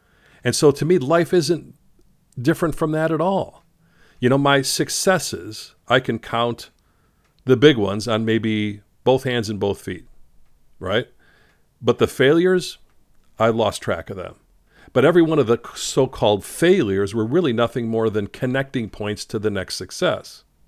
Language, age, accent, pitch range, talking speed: English, 50-69, American, 100-135 Hz, 160 wpm